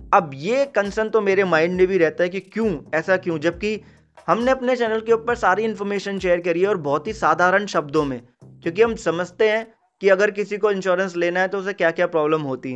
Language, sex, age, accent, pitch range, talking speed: Hindi, male, 20-39, native, 165-205 Hz, 60 wpm